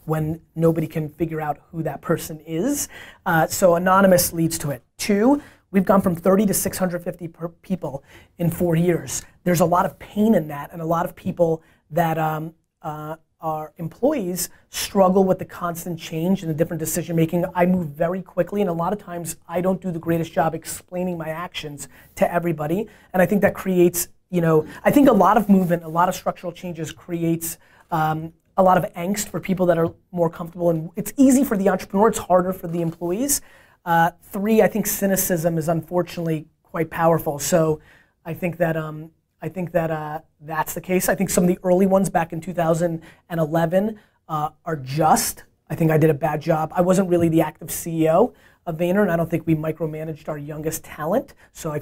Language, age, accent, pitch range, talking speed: English, 30-49, American, 160-185 Hz, 200 wpm